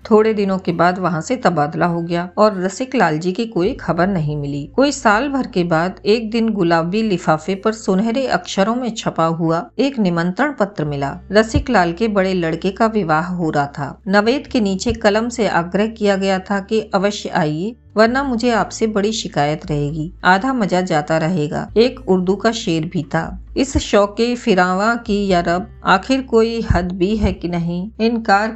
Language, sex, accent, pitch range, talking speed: Hindi, female, native, 175-220 Hz, 185 wpm